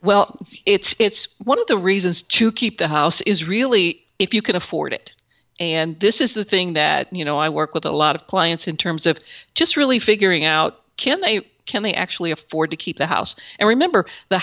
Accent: American